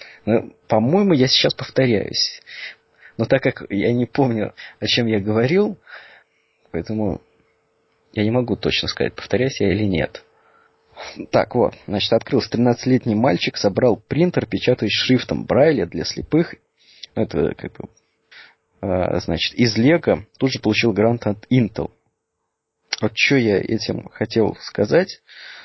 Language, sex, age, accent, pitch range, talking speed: Russian, male, 30-49, native, 105-130 Hz, 130 wpm